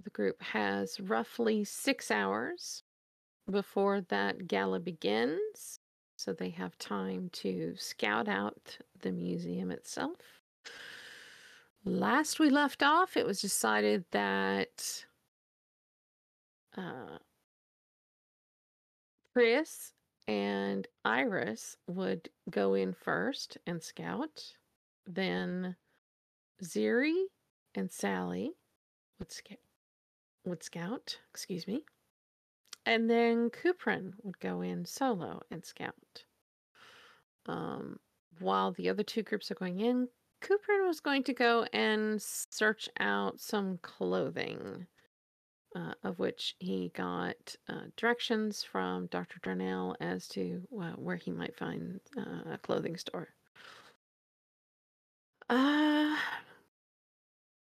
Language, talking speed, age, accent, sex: English, 100 wpm, 40-59, American, female